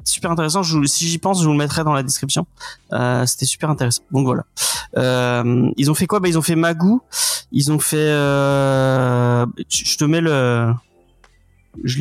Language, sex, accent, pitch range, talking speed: French, male, French, 135-185 Hz, 165 wpm